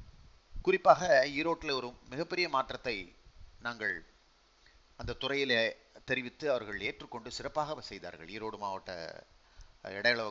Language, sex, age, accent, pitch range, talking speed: Tamil, male, 30-49, native, 115-165 Hz, 95 wpm